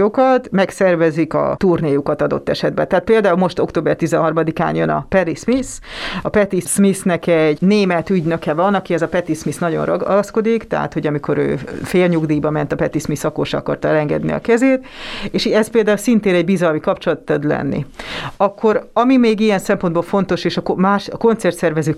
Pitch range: 160-210 Hz